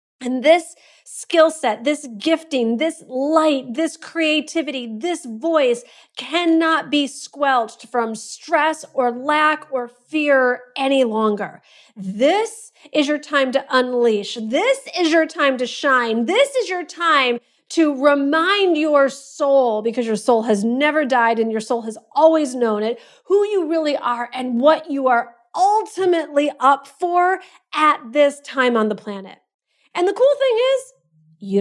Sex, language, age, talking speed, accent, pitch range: female, English, 40-59, 150 wpm, American, 225-310 Hz